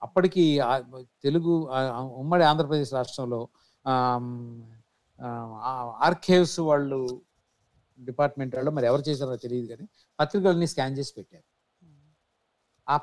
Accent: native